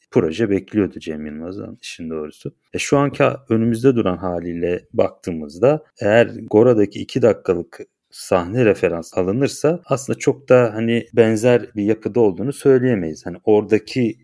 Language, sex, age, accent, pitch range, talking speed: Turkish, male, 40-59, native, 95-120 Hz, 130 wpm